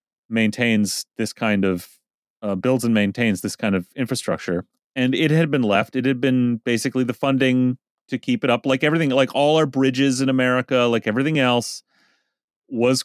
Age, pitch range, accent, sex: 30-49, 110-145 Hz, American, male